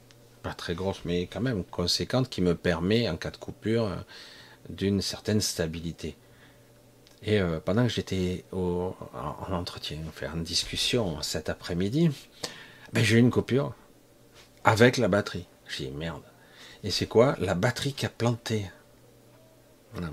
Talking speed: 155 wpm